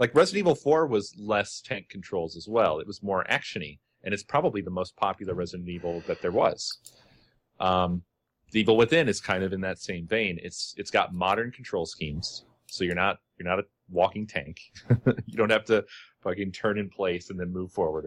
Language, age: English, 30-49